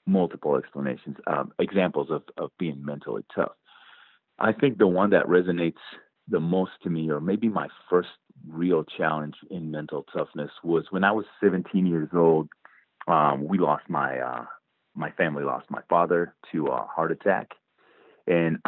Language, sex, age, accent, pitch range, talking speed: English, male, 40-59, American, 75-95 Hz, 160 wpm